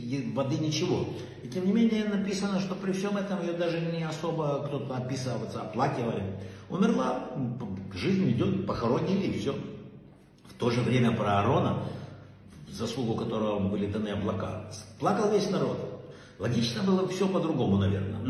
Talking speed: 145 wpm